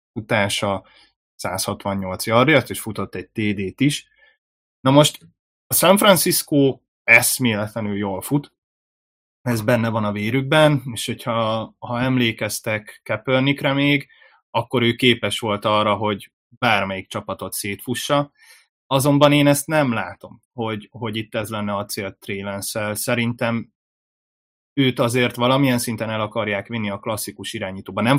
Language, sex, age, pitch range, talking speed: Hungarian, male, 20-39, 105-125 Hz, 130 wpm